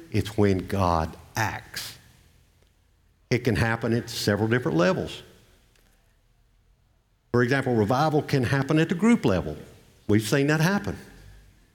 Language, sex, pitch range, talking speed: English, male, 95-120 Hz, 125 wpm